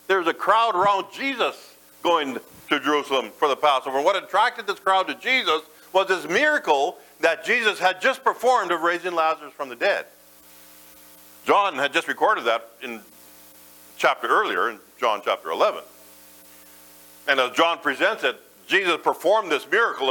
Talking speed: 155 wpm